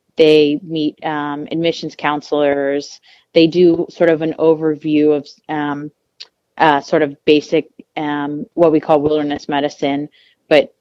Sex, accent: female, American